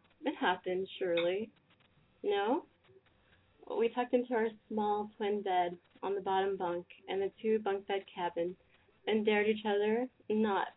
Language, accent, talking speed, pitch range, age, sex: English, American, 145 wpm, 185-230 Hz, 20-39, female